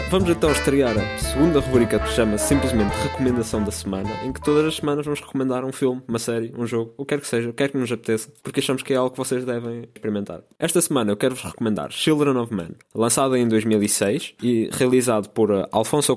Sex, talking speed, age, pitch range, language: male, 230 wpm, 20-39, 105-130 Hz, Portuguese